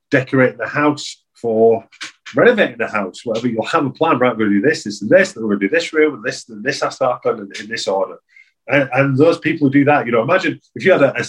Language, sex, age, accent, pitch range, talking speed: English, male, 30-49, British, 100-145 Hz, 285 wpm